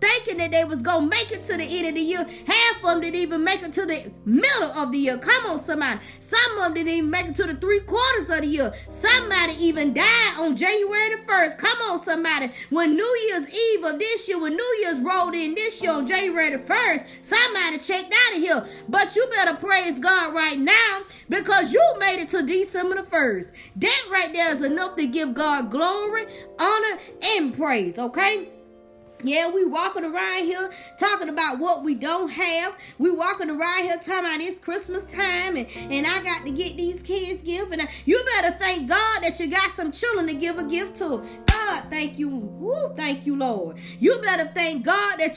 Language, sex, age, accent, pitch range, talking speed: English, female, 20-39, American, 320-390 Hz, 210 wpm